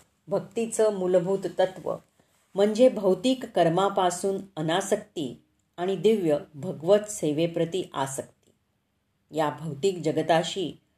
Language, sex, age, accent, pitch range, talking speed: Marathi, female, 40-59, native, 155-195 Hz, 80 wpm